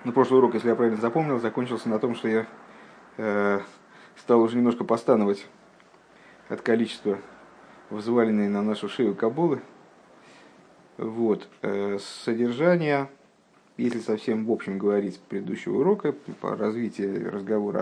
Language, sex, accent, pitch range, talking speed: Russian, male, native, 110-130 Hz, 120 wpm